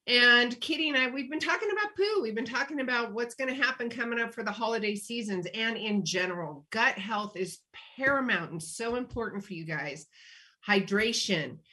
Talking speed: 190 wpm